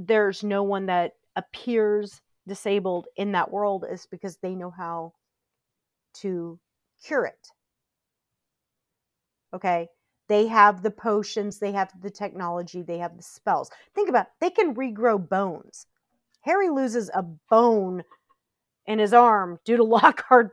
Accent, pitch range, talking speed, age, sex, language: American, 180-225 Hz, 135 wpm, 40-59, female, English